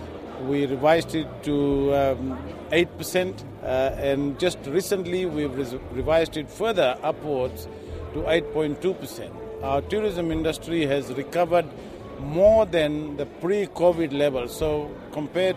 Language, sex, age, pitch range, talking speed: English, male, 50-69, 140-170 Hz, 110 wpm